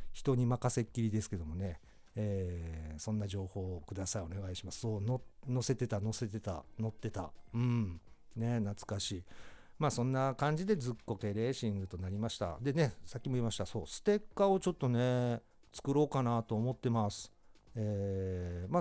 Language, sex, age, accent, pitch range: Japanese, male, 50-69, native, 100-145 Hz